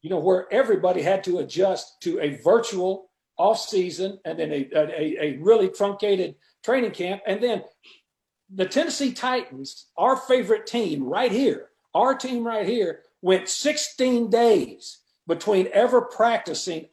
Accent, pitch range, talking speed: American, 175-235 Hz, 145 wpm